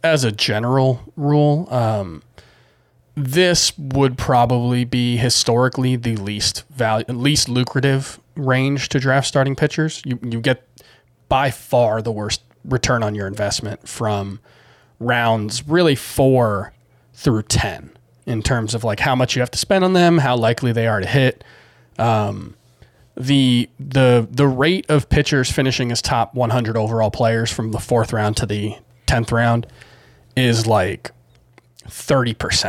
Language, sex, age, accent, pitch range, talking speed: English, male, 30-49, American, 110-130 Hz, 145 wpm